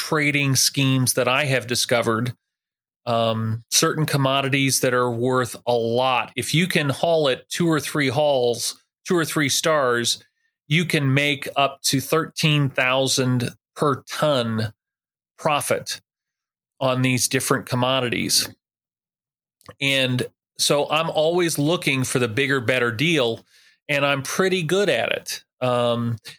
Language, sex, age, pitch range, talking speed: English, male, 40-59, 125-155 Hz, 130 wpm